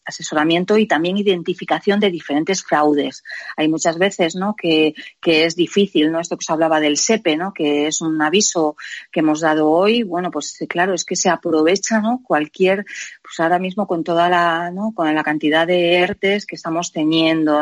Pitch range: 155-190 Hz